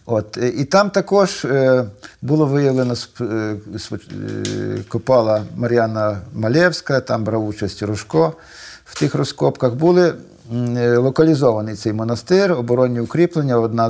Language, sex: Ukrainian, male